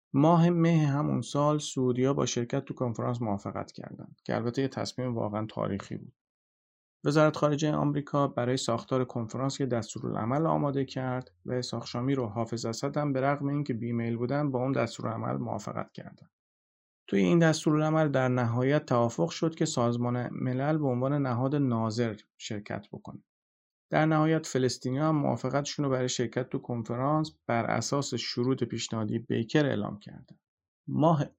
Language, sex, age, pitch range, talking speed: Persian, male, 40-59, 115-145 Hz, 145 wpm